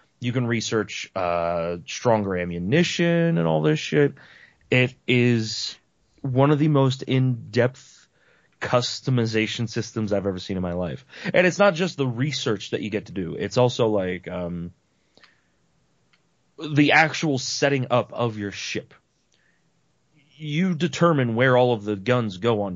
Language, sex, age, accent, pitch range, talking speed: English, male, 30-49, American, 105-135 Hz, 150 wpm